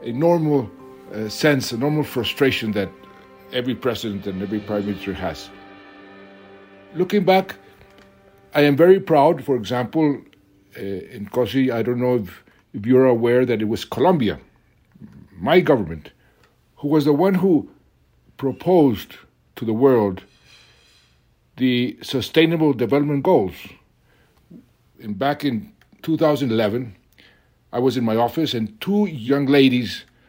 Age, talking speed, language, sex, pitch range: 60-79, 130 wpm, English, male, 110-145 Hz